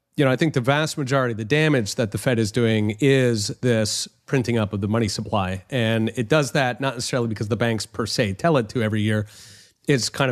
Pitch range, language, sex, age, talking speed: 110-140 Hz, English, male, 30-49, 240 wpm